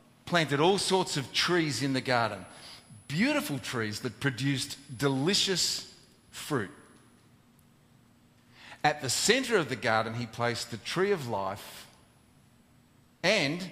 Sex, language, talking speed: male, English, 120 wpm